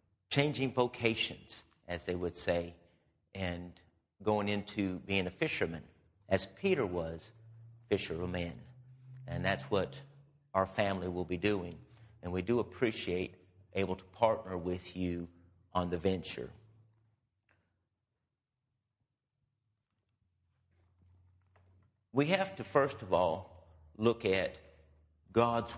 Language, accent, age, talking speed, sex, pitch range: English, American, 50-69, 105 wpm, male, 90-120 Hz